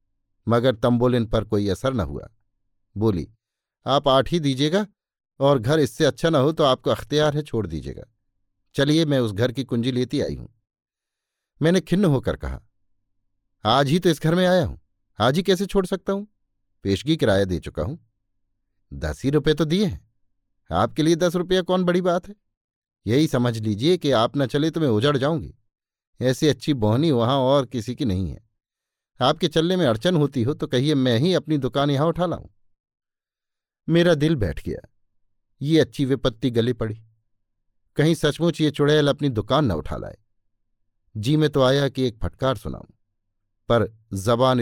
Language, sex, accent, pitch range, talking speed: Hindi, male, native, 105-150 Hz, 175 wpm